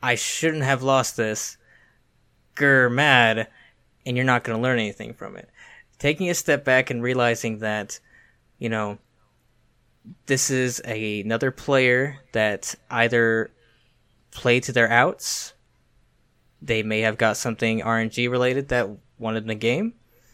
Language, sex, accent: English, male, American